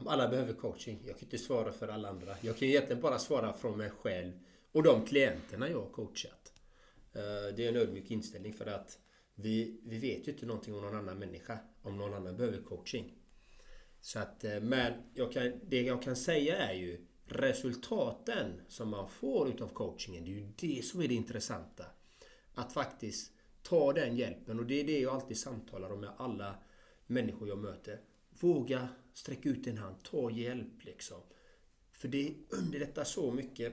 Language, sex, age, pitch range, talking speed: Swedish, male, 30-49, 100-135 Hz, 180 wpm